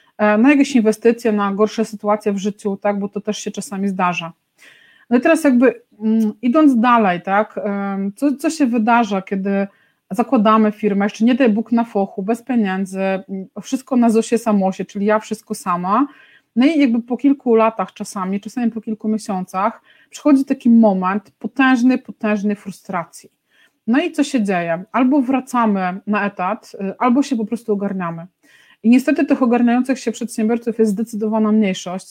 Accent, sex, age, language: native, female, 30-49, Polish